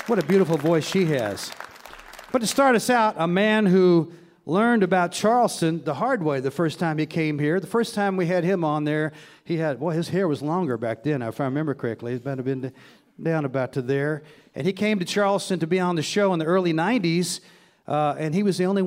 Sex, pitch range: male, 140-185 Hz